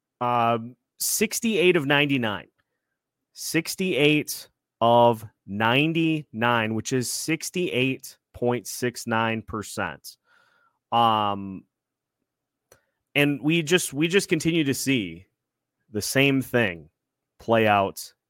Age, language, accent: 30-49, English, American